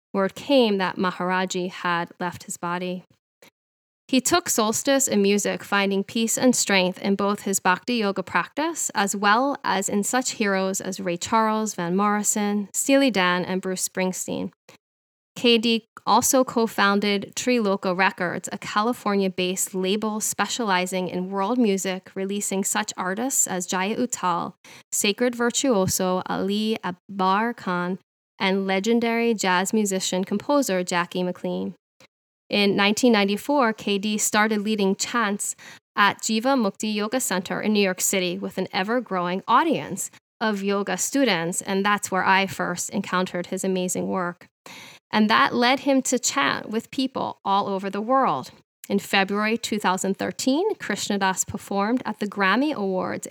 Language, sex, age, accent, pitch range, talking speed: English, female, 10-29, American, 185-230 Hz, 135 wpm